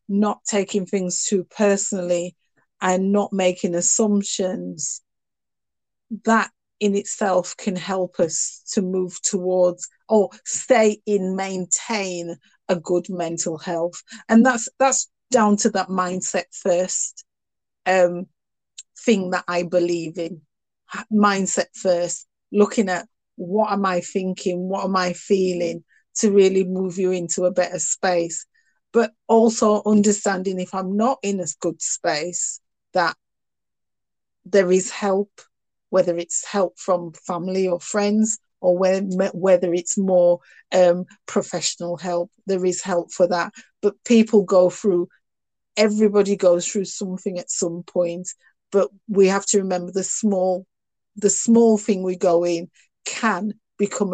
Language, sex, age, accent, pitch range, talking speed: English, female, 30-49, British, 180-205 Hz, 135 wpm